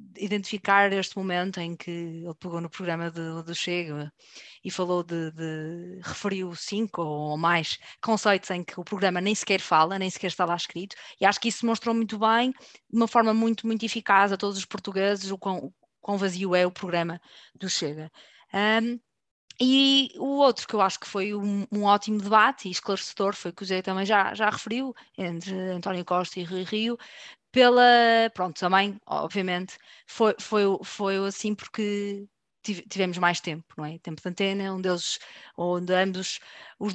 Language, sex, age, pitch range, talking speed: Portuguese, female, 20-39, 180-220 Hz, 185 wpm